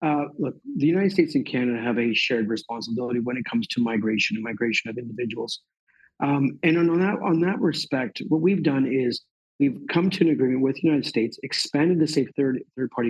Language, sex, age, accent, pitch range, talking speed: English, male, 50-69, American, 120-170 Hz, 205 wpm